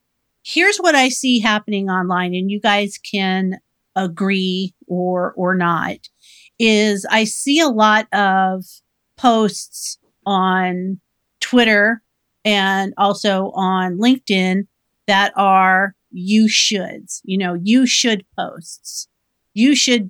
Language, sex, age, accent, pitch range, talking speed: English, female, 50-69, American, 195-230 Hz, 115 wpm